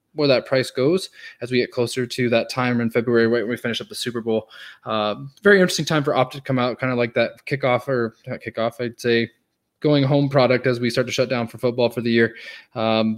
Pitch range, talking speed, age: 120-145 Hz, 250 wpm, 20-39